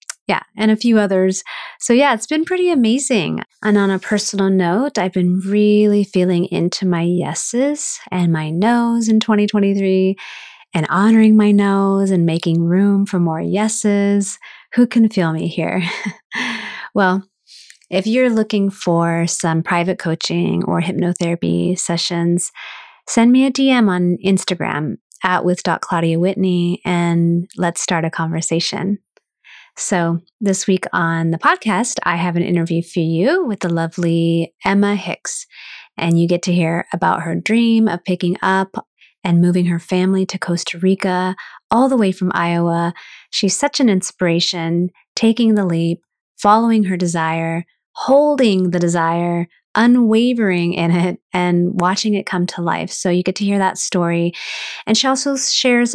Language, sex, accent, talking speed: English, female, American, 150 wpm